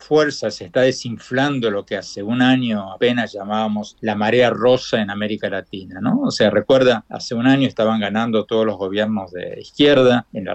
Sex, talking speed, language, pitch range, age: male, 190 wpm, Spanish, 105-135 Hz, 50-69